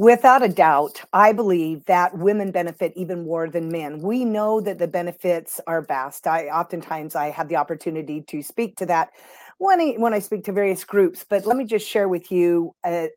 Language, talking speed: English, 205 wpm